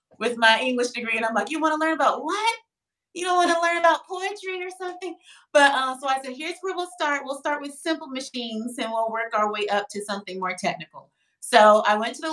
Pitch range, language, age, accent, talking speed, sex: 185-255 Hz, English, 30-49, American, 250 wpm, female